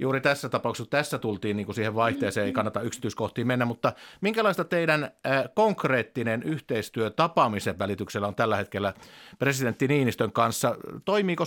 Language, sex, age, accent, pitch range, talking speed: Finnish, male, 50-69, native, 110-140 Hz, 145 wpm